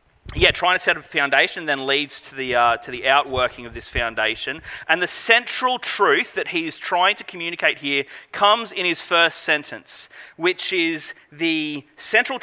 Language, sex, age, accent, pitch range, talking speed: English, male, 30-49, Australian, 160-225 Hz, 170 wpm